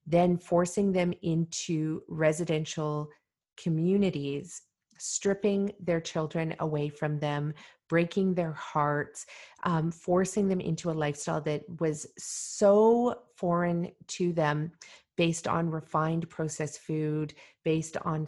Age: 30-49